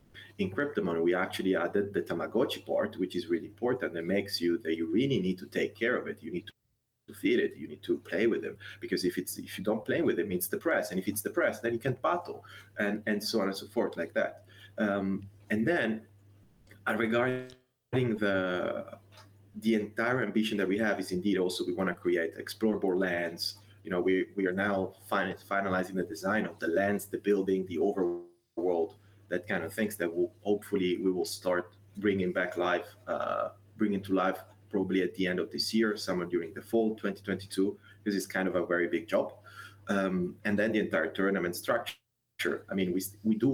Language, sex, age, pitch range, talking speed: English, male, 30-49, 95-105 Hz, 210 wpm